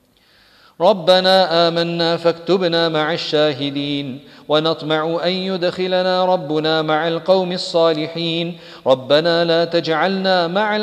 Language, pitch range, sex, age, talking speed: English, 155-170 Hz, male, 40-59, 90 wpm